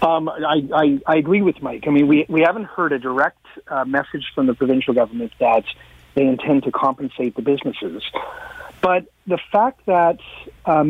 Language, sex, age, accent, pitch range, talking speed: English, male, 40-59, American, 145-210 Hz, 180 wpm